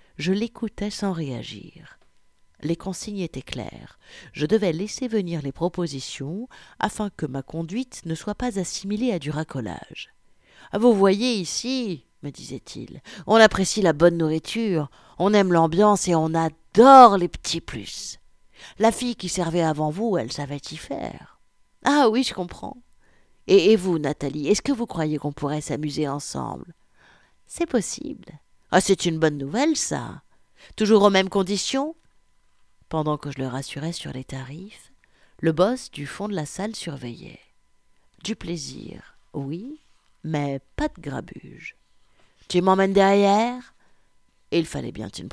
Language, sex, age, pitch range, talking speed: French, female, 60-79, 150-210 Hz, 155 wpm